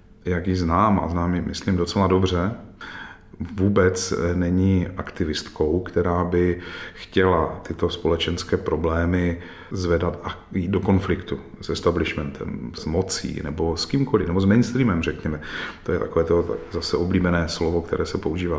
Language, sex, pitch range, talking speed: Czech, male, 85-100 Hz, 140 wpm